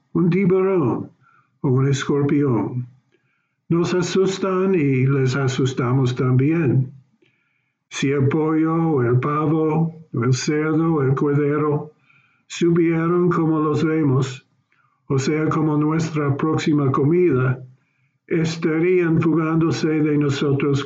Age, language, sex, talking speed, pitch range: 60-79, English, male, 100 wpm, 135-165 Hz